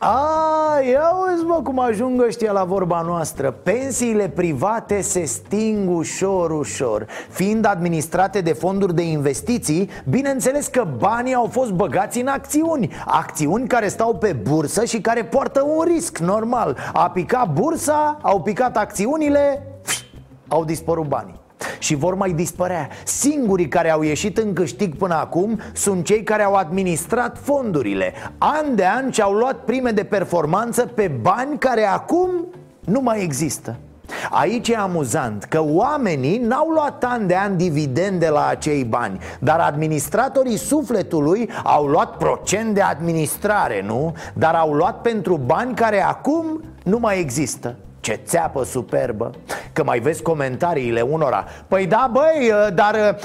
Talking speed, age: 145 wpm, 30-49